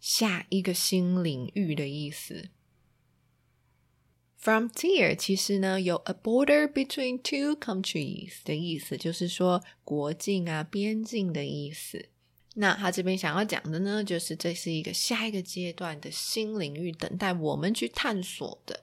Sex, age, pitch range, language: female, 20-39, 160-215 Hz, Chinese